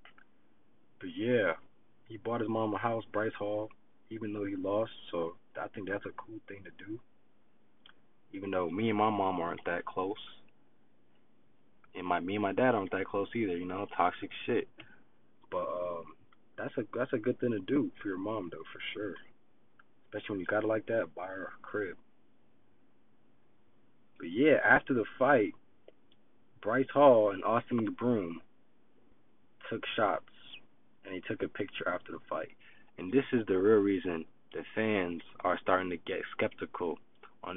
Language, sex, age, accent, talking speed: English, male, 20-39, American, 175 wpm